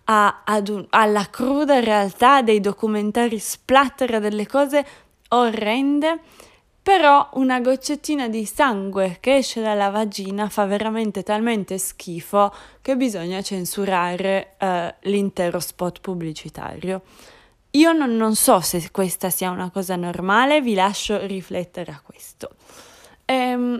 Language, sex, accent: Italian, female, native